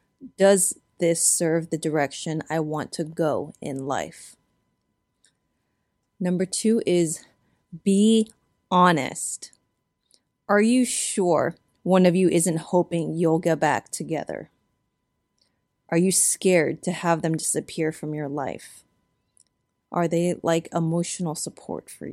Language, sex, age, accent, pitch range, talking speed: English, female, 30-49, American, 155-185 Hz, 120 wpm